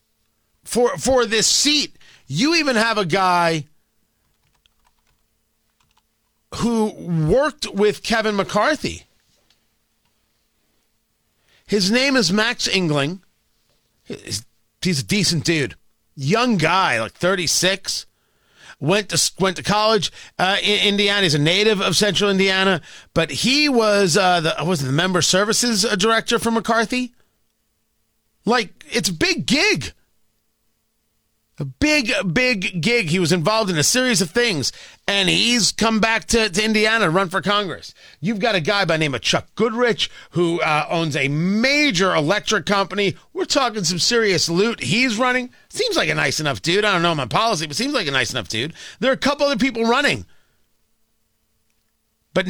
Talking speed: 150 wpm